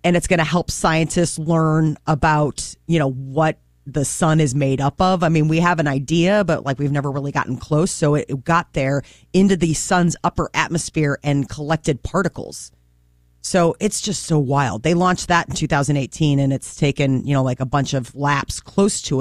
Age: 30-49